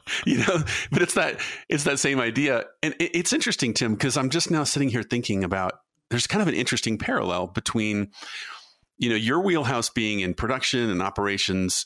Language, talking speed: English, 185 wpm